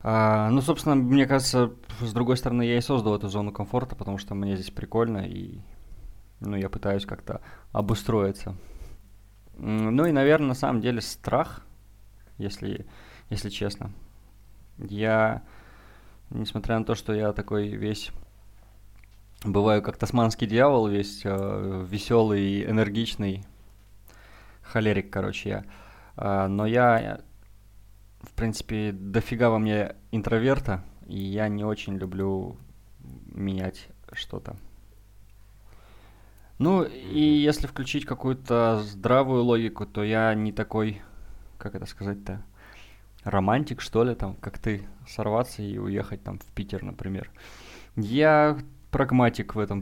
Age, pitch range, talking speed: 20-39, 100-115 Hz, 120 wpm